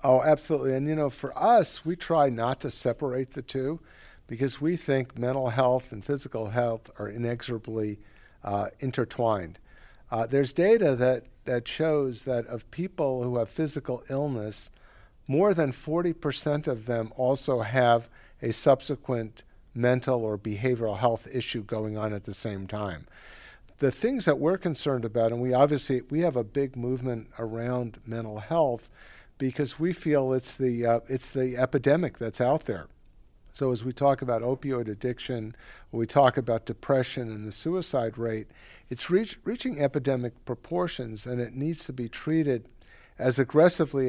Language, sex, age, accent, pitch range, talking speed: English, male, 50-69, American, 115-140 Hz, 160 wpm